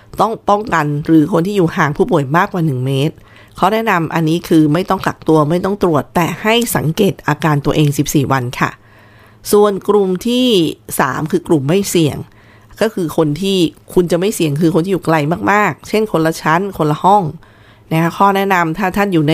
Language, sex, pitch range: Thai, female, 145-180 Hz